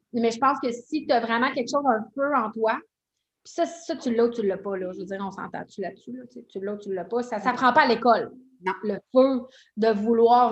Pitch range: 230-280 Hz